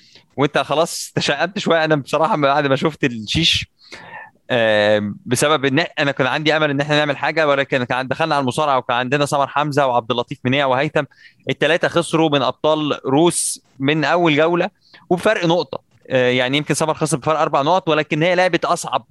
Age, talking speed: 20-39, 165 wpm